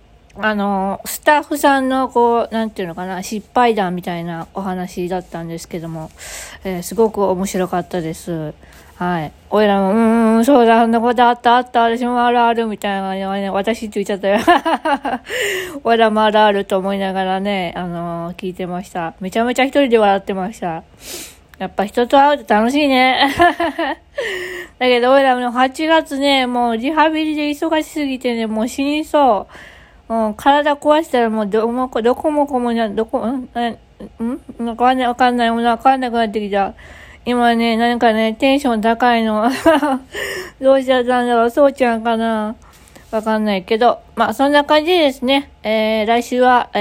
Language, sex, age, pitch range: Japanese, female, 20-39, 200-260 Hz